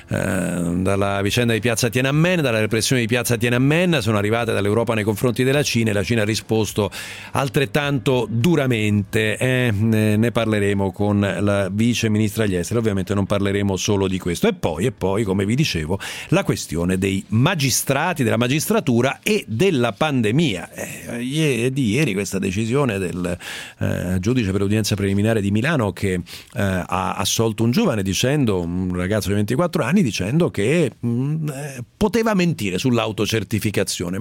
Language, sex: Italian, male